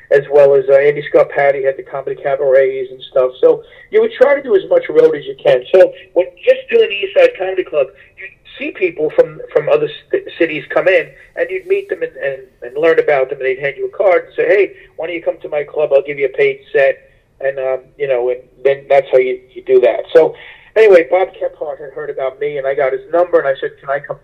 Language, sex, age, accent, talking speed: English, male, 40-59, American, 265 wpm